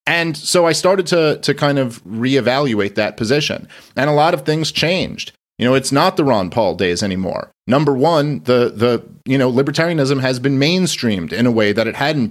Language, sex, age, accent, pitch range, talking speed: English, male, 30-49, American, 120-155 Hz, 205 wpm